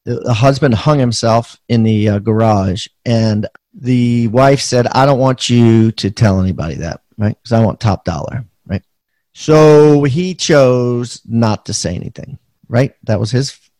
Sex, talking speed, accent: male, 165 wpm, American